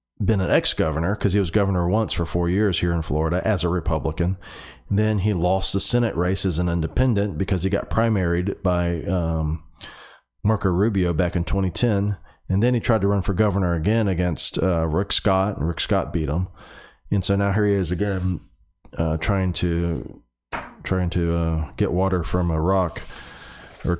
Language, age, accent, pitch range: English, 40-59, American, 85-105 Hz